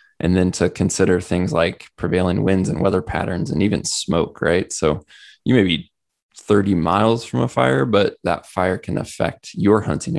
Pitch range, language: 90-105 Hz, English